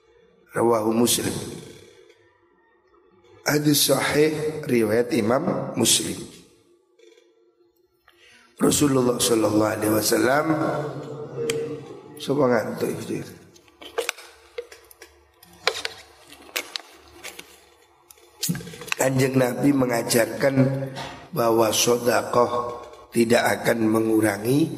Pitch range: 120-155 Hz